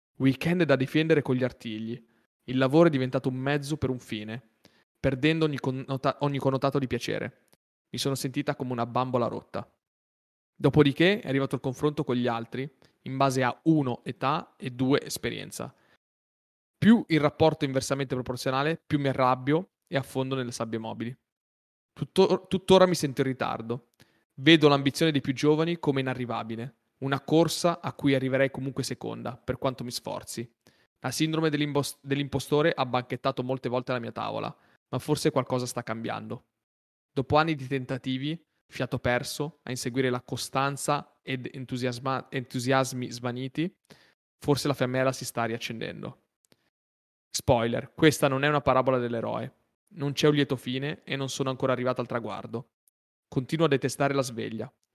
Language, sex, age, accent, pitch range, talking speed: Italian, male, 20-39, native, 125-145 Hz, 155 wpm